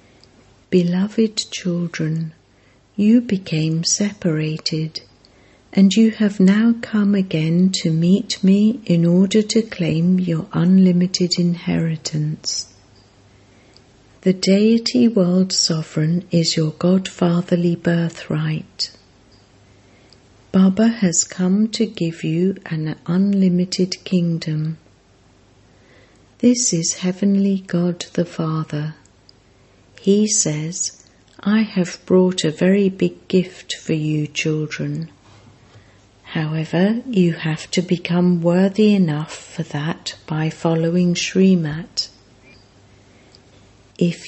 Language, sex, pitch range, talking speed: English, female, 130-185 Hz, 95 wpm